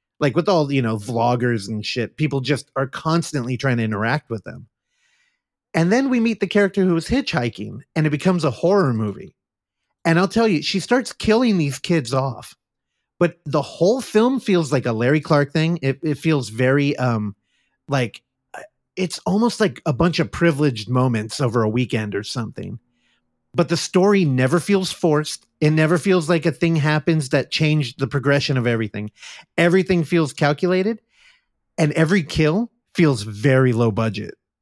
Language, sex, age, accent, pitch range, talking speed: English, male, 30-49, American, 125-175 Hz, 175 wpm